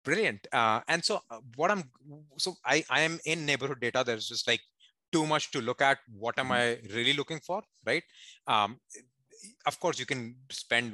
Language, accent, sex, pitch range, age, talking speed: English, Indian, male, 115-155 Hz, 30-49, 185 wpm